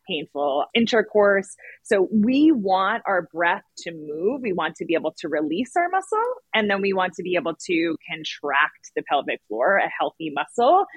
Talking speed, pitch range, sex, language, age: 180 wpm, 180-285 Hz, female, English, 30-49